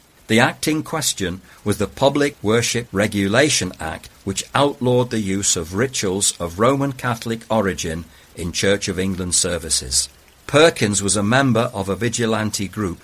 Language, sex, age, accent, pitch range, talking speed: English, male, 60-79, British, 90-125 Hz, 150 wpm